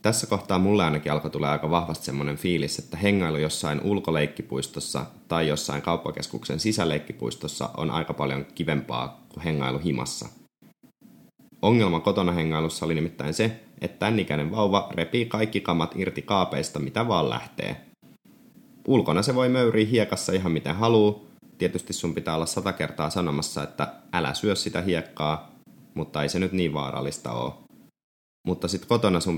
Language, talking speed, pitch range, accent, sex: Finnish, 145 wpm, 75-95 Hz, native, male